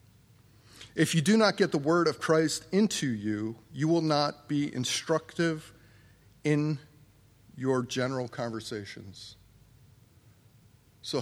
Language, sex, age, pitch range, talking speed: English, male, 40-59, 110-140 Hz, 110 wpm